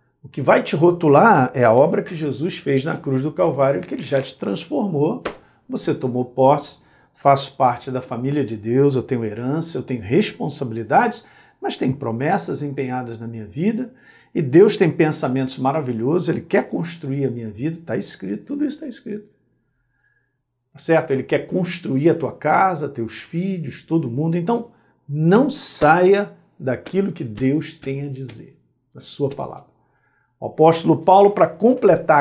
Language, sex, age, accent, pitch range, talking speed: Portuguese, male, 50-69, Brazilian, 125-175 Hz, 160 wpm